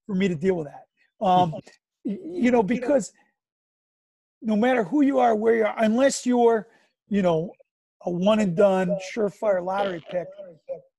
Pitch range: 190-235 Hz